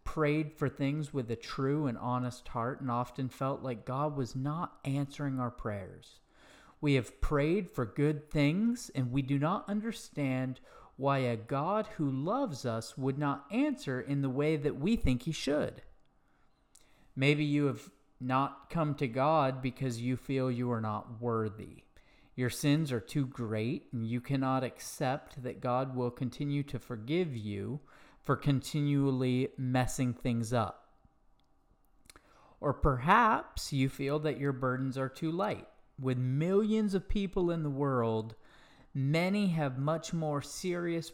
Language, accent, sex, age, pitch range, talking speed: English, American, male, 40-59, 125-150 Hz, 150 wpm